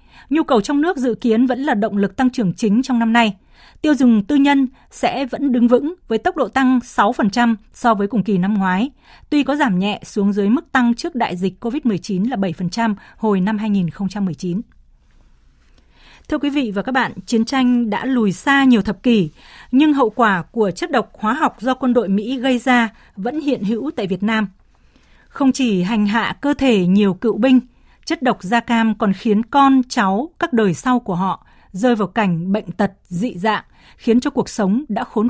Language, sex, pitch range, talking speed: Vietnamese, female, 200-255 Hz, 205 wpm